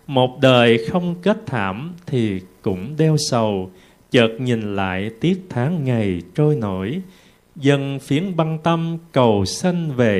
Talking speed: 140 wpm